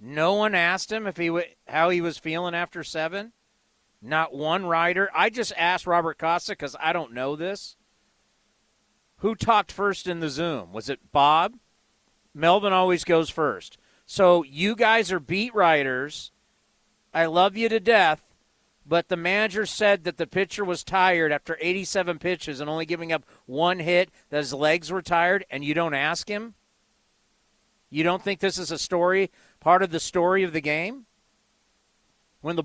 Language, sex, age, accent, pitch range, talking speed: English, male, 40-59, American, 160-200 Hz, 175 wpm